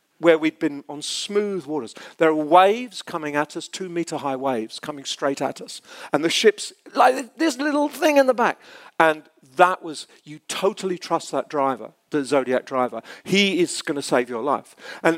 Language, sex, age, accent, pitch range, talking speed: Swedish, male, 50-69, British, 145-200 Hz, 190 wpm